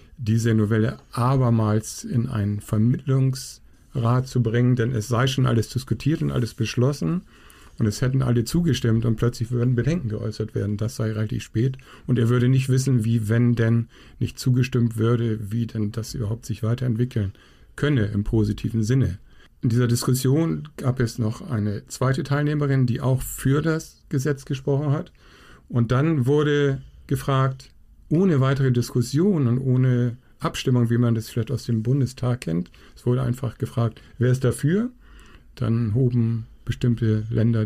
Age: 50-69